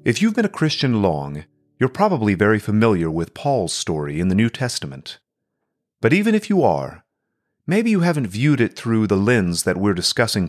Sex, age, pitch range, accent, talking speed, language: male, 40-59, 105-155 Hz, American, 190 wpm, English